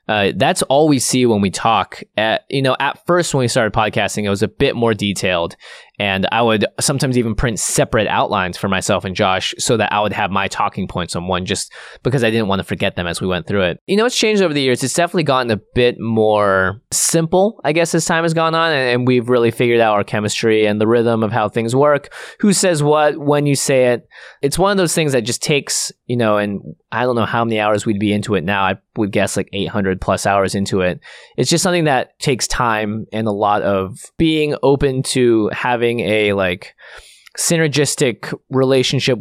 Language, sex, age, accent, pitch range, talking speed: English, male, 20-39, American, 105-140 Hz, 230 wpm